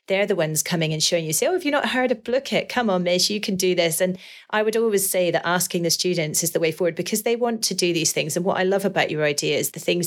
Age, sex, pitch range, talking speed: 30-49, female, 160-185 Hz, 315 wpm